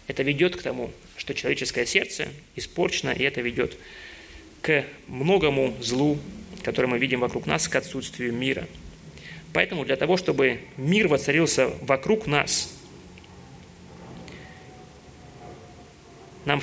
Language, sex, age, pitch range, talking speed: Russian, male, 30-49, 125-155 Hz, 110 wpm